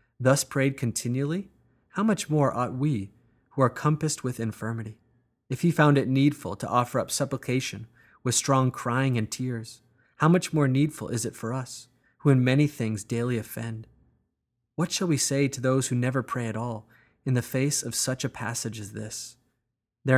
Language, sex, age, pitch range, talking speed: English, male, 30-49, 115-135 Hz, 185 wpm